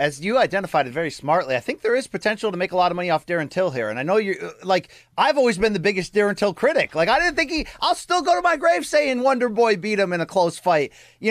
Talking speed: 290 wpm